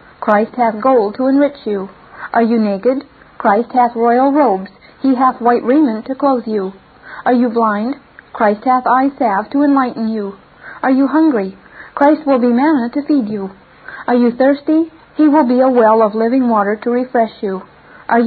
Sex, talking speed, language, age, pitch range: female, 180 wpm, English, 40-59, 220-275 Hz